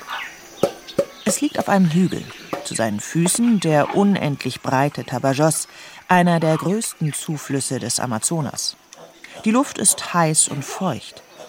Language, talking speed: German, 125 wpm